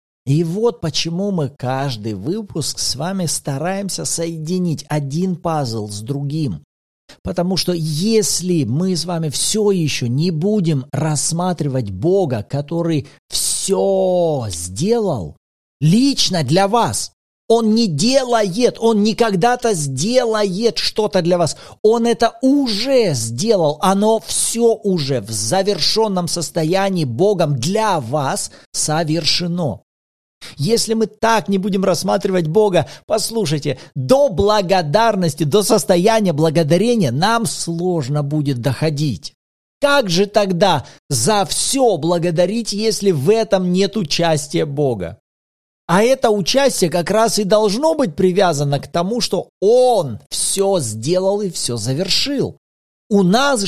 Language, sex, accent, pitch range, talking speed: Russian, male, native, 150-210 Hz, 115 wpm